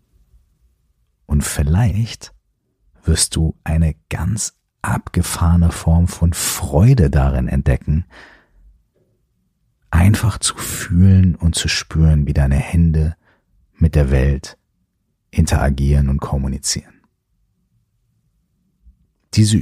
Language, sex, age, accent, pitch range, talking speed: German, male, 40-59, German, 70-90 Hz, 85 wpm